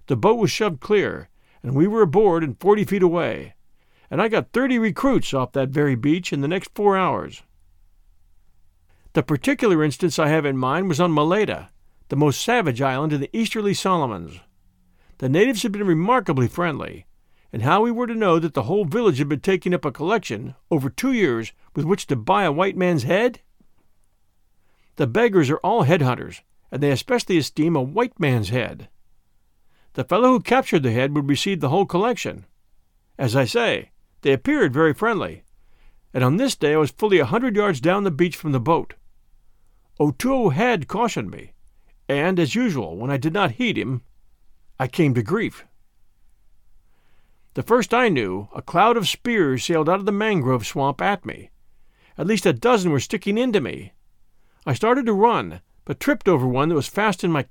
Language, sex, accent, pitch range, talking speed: English, male, American, 125-200 Hz, 185 wpm